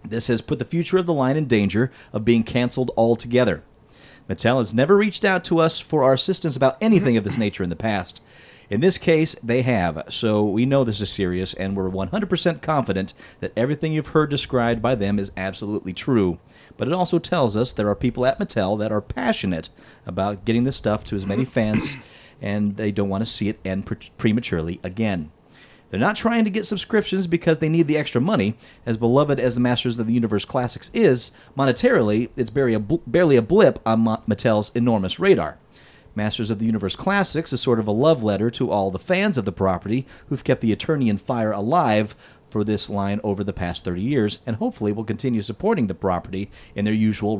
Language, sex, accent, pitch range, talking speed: English, male, American, 105-135 Hz, 210 wpm